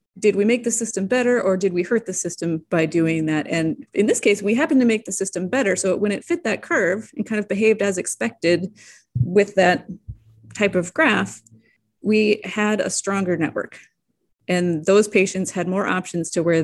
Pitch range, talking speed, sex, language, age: 165-200 Hz, 200 wpm, female, English, 30-49